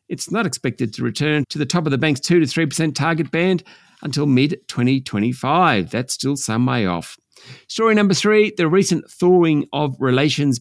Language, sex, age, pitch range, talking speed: English, male, 50-69, 120-170 Hz, 175 wpm